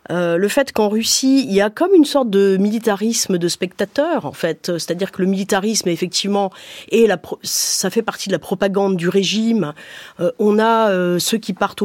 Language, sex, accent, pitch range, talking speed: French, female, French, 190-255 Hz, 195 wpm